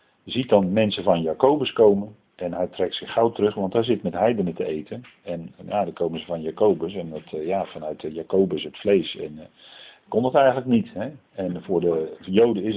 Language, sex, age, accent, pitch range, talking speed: Dutch, male, 50-69, Dutch, 95-125 Hz, 210 wpm